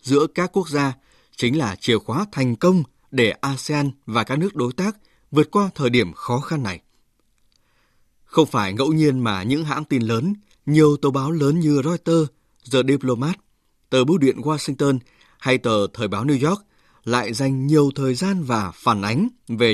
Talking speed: 180 wpm